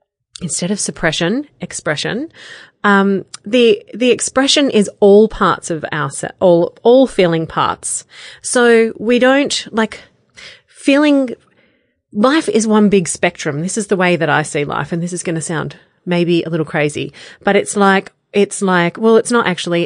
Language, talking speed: English, 165 wpm